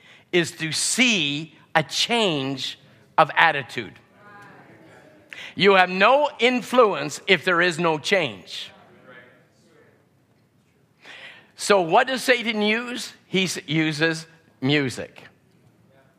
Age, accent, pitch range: 50-69, American, 165-230 Hz